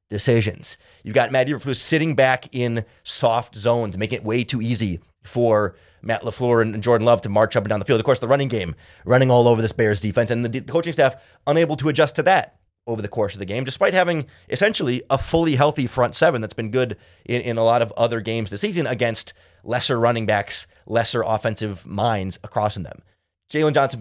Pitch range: 110-140 Hz